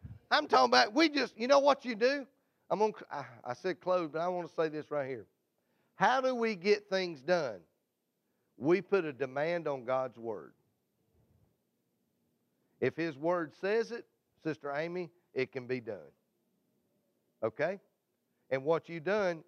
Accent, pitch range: American, 135-180 Hz